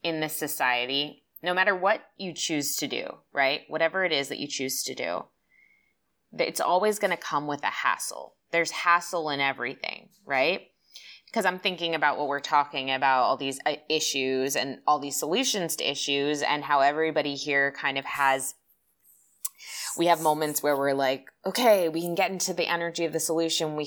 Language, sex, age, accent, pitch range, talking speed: English, female, 20-39, American, 140-170 Hz, 185 wpm